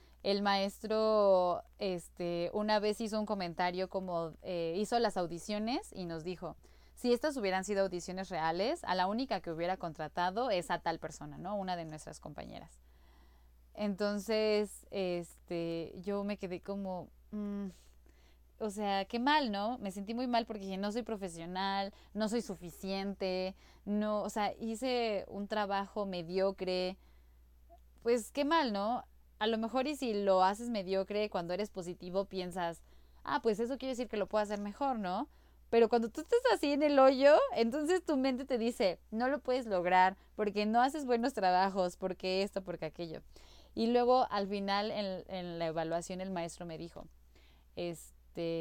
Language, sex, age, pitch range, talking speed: Spanish, female, 20-39, 175-215 Hz, 165 wpm